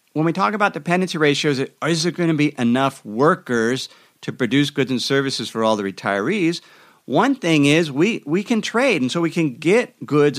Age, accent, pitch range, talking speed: 50-69, American, 120-180 Hz, 200 wpm